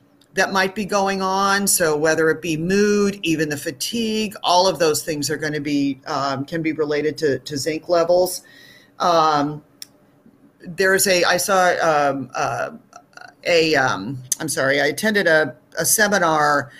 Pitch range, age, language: 155-190 Hz, 50-69, English